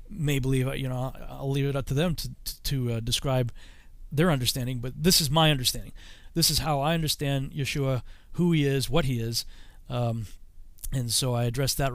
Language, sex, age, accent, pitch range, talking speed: English, male, 40-59, American, 125-145 Hz, 195 wpm